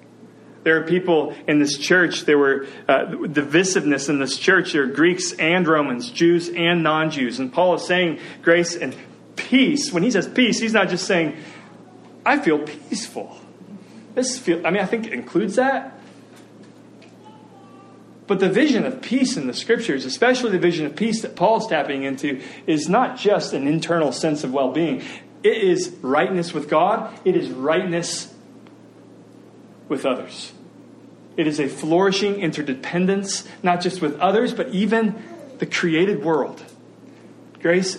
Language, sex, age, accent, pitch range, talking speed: English, male, 30-49, American, 150-205 Hz, 155 wpm